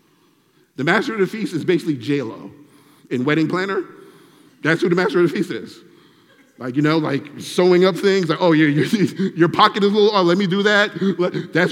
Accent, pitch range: American, 150-205 Hz